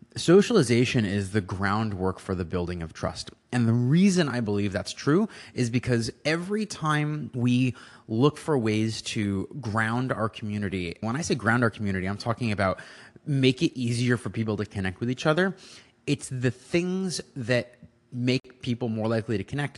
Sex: male